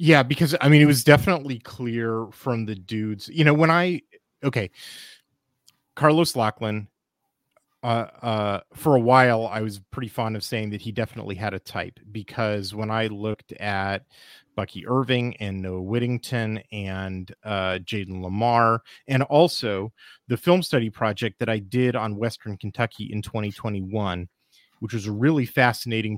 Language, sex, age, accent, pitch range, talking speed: English, male, 30-49, American, 105-125 Hz, 155 wpm